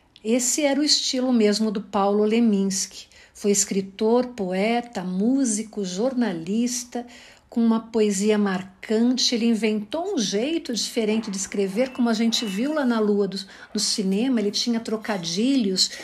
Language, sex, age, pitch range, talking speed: Portuguese, female, 50-69, 200-240 Hz, 140 wpm